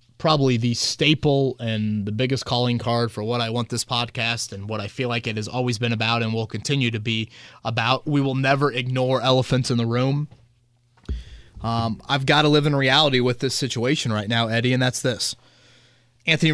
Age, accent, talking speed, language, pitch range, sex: 30-49, American, 200 wpm, English, 115-135 Hz, male